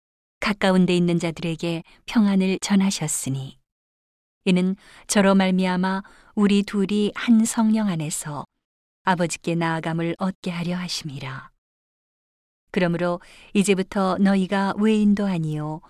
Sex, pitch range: female, 170-200 Hz